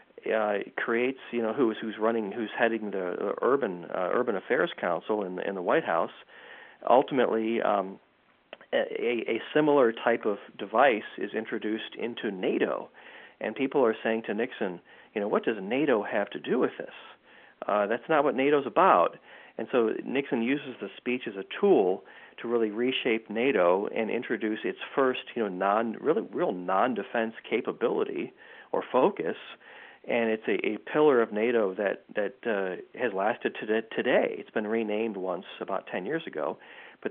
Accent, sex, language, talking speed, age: American, male, English, 175 wpm, 50-69